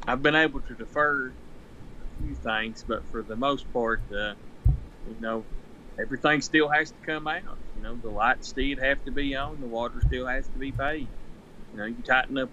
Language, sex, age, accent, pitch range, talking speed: English, male, 30-49, American, 110-130 Hz, 205 wpm